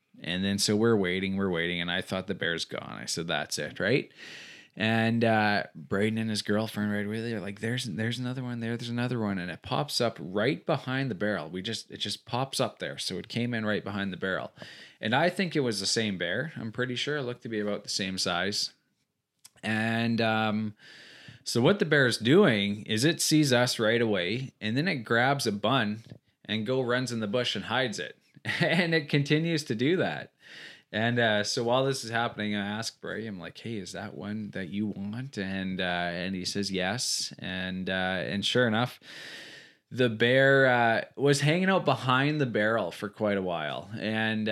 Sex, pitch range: male, 100-125 Hz